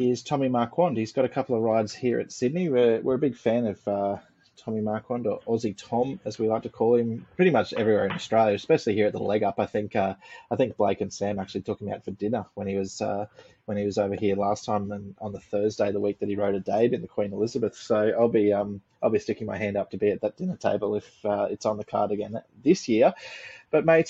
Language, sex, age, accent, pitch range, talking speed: English, male, 20-39, Australian, 105-125 Hz, 270 wpm